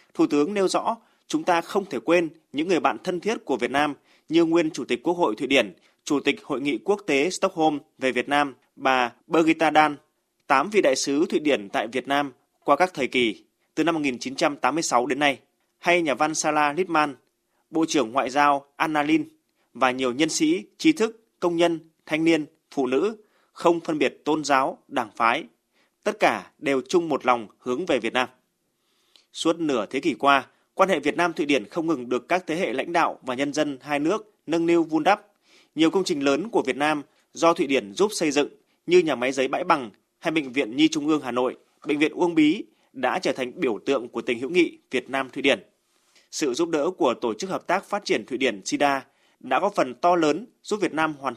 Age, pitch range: 20-39, 140-190 Hz